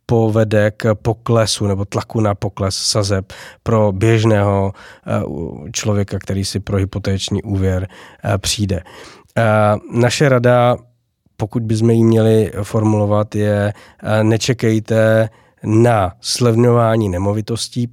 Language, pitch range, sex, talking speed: Czech, 100-115 Hz, male, 95 wpm